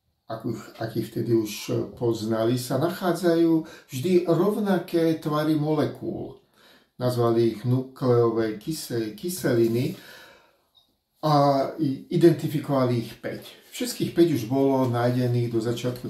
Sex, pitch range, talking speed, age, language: male, 115-155 Hz, 95 wpm, 50-69, Slovak